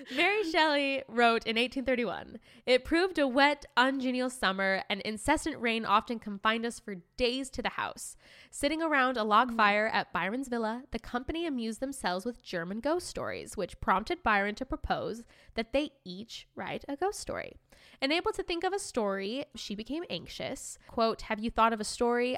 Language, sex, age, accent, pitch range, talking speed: English, female, 10-29, American, 200-255 Hz, 175 wpm